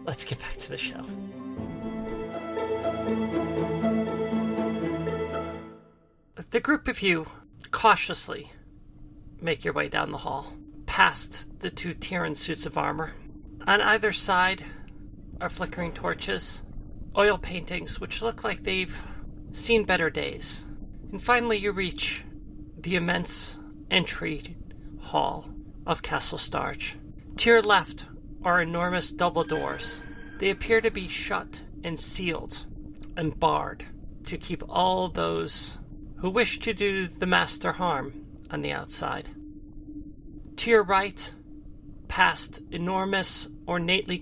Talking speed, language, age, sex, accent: 115 wpm, English, 40-59, male, American